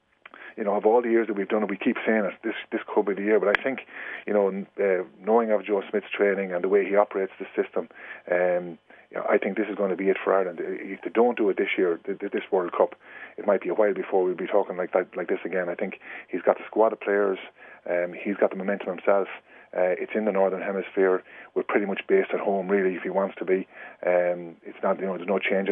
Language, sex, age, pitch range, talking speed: English, male, 30-49, 95-105 Hz, 270 wpm